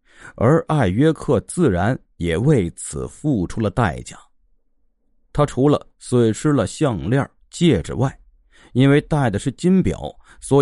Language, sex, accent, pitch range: Chinese, male, native, 110-160 Hz